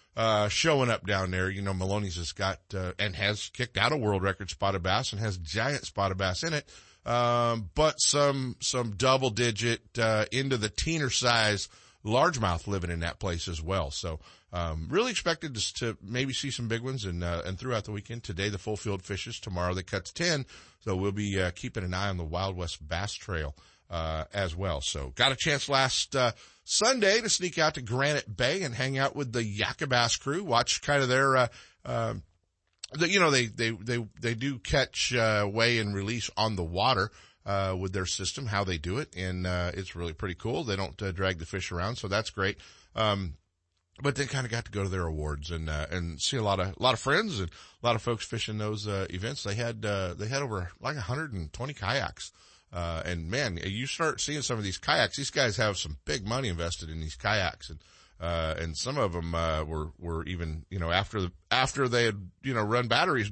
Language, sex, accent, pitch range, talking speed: English, male, American, 90-120 Hz, 225 wpm